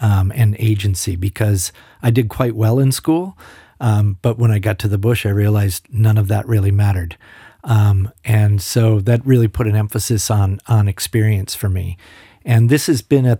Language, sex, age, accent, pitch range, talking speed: English, male, 50-69, American, 100-120 Hz, 195 wpm